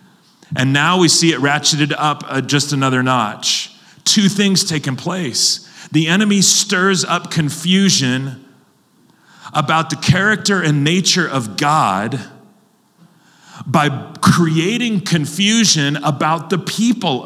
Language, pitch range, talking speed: English, 125-180 Hz, 110 wpm